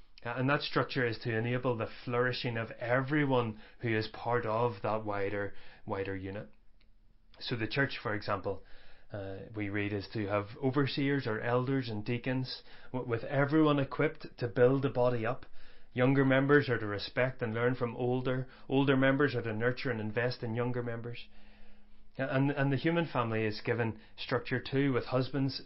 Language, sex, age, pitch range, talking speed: English, male, 30-49, 110-130 Hz, 170 wpm